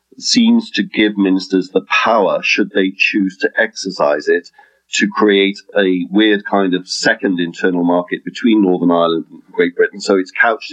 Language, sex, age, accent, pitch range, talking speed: English, male, 40-59, British, 90-105 Hz, 170 wpm